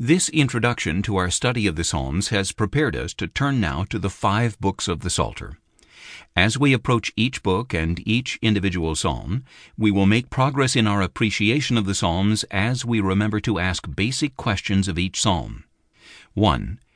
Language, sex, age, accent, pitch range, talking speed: English, male, 60-79, American, 95-120 Hz, 180 wpm